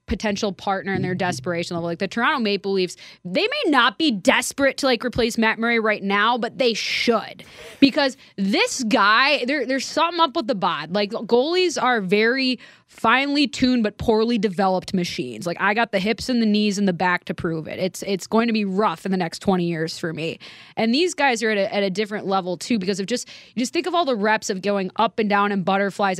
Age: 20-39